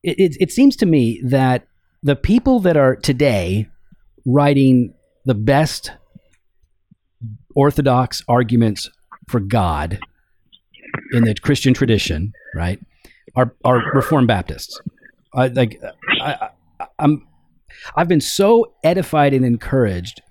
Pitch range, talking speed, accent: 115-145 Hz, 115 wpm, American